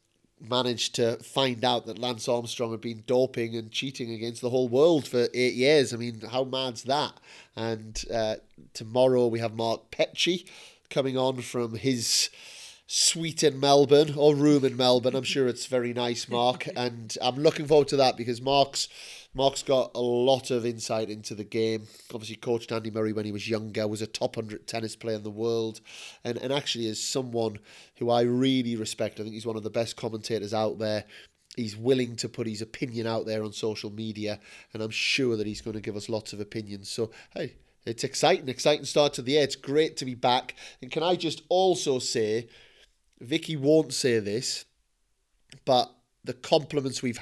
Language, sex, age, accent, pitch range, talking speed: English, male, 30-49, British, 110-135 Hz, 195 wpm